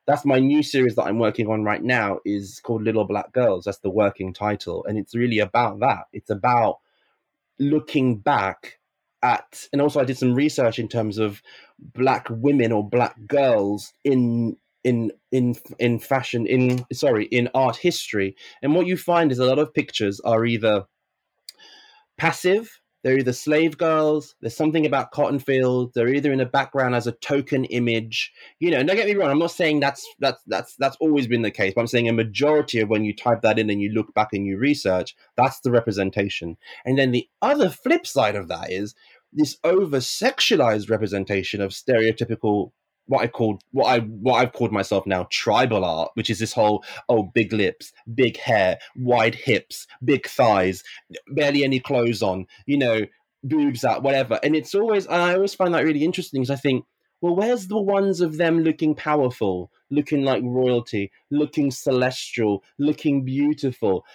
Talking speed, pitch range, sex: 180 wpm, 110-150 Hz, male